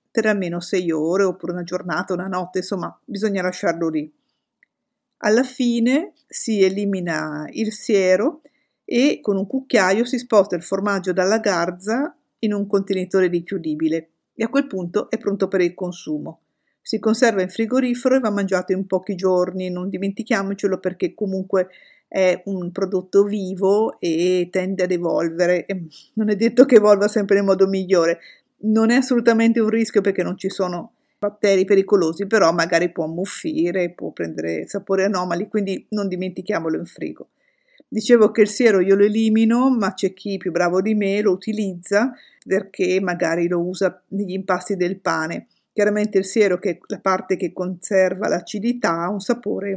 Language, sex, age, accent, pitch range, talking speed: Italian, female, 50-69, native, 180-215 Hz, 160 wpm